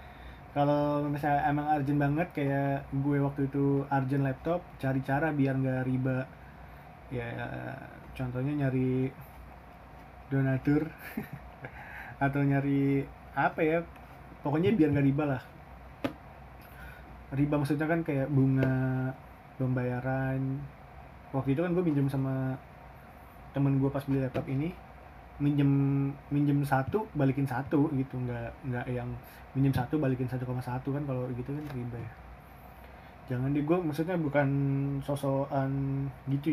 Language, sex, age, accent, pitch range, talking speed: Indonesian, male, 20-39, native, 115-145 Hz, 125 wpm